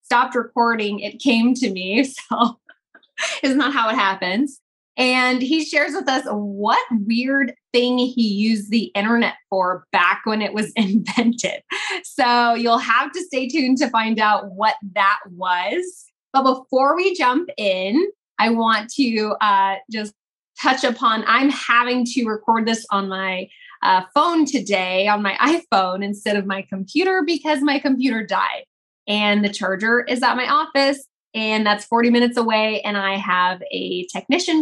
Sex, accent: female, American